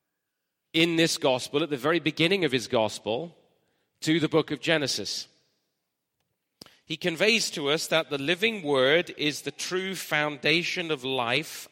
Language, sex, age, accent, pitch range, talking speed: English, male, 40-59, British, 145-195 Hz, 150 wpm